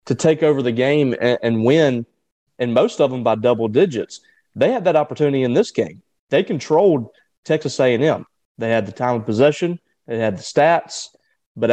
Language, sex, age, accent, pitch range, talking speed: English, male, 30-49, American, 115-140 Hz, 185 wpm